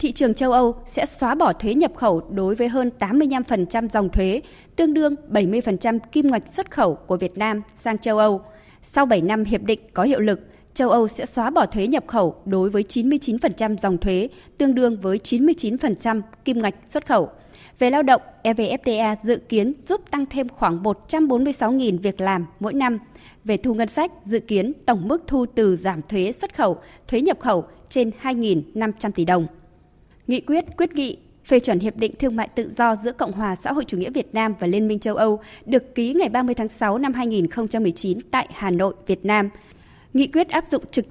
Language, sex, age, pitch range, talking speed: Vietnamese, female, 20-39, 205-270 Hz, 200 wpm